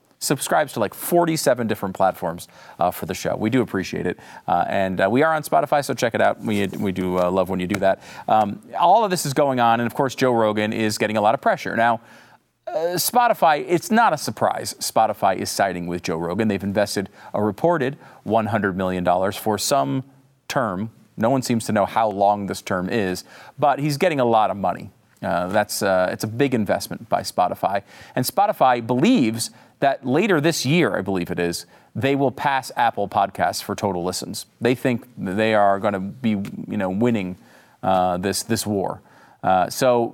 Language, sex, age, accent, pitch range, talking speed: English, male, 40-59, American, 100-135 Hz, 200 wpm